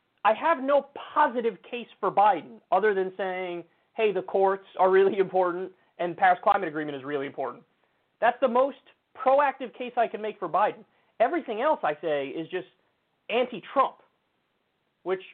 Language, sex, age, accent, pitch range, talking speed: English, male, 30-49, American, 160-205 Hz, 160 wpm